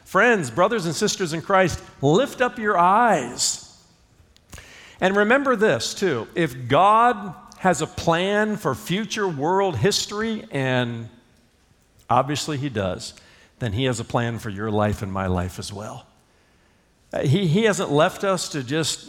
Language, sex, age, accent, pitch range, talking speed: English, male, 50-69, American, 115-175 Hz, 150 wpm